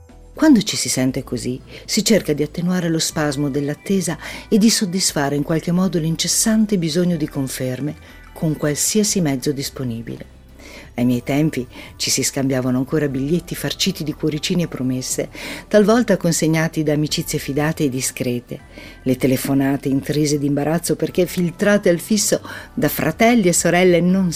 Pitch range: 130-175 Hz